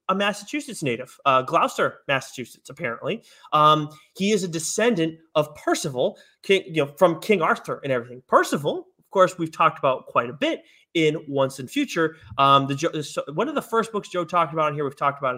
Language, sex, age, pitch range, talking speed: English, male, 30-49, 140-180 Hz, 195 wpm